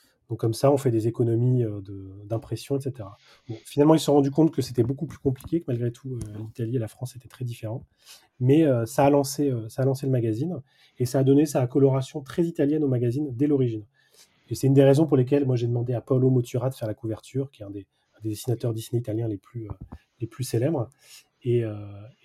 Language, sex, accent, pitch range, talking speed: French, male, French, 115-140 Hz, 220 wpm